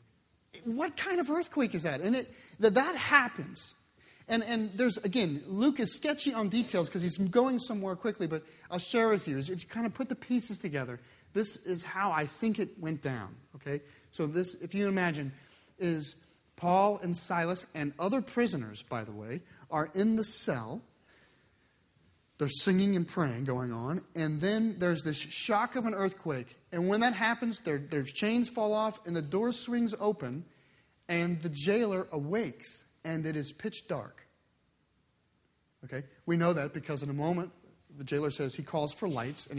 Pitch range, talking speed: 155-225 Hz, 180 wpm